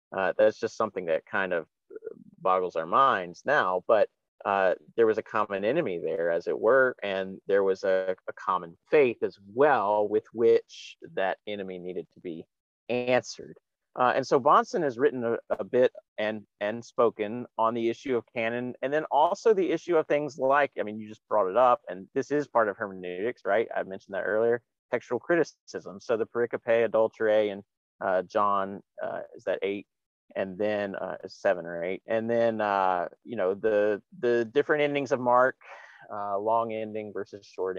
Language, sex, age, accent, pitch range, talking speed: English, male, 30-49, American, 100-145 Hz, 185 wpm